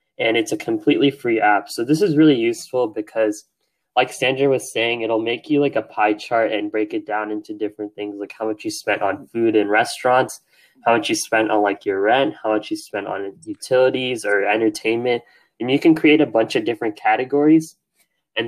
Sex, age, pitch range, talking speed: male, 10-29, 105-140 Hz, 210 wpm